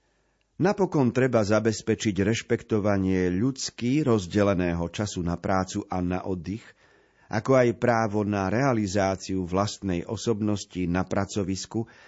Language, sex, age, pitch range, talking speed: Slovak, male, 40-59, 95-125 Hz, 105 wpm